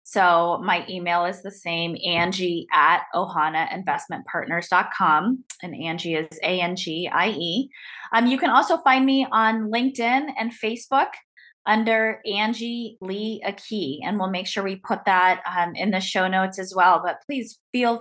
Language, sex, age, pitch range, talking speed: English, female, 20-39, 190-240 Hz, 145 wpm